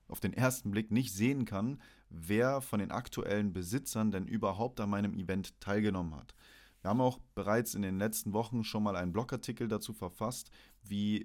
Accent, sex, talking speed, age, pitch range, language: German, male, 180 wpm, 30-49, 100-115 Hz, German